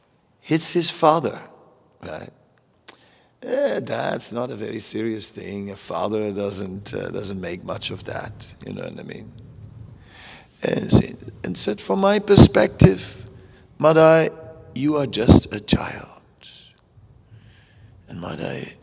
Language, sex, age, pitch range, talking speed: English, male, 50-69, 110-160 Hz, 125 wpm